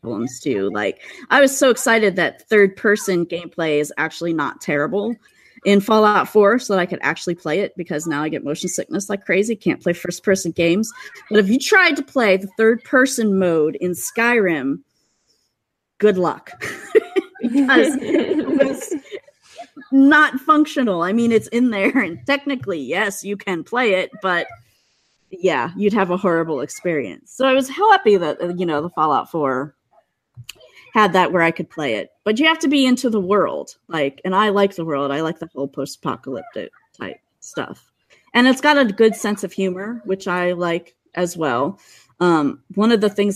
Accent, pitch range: American, 170-225 Hz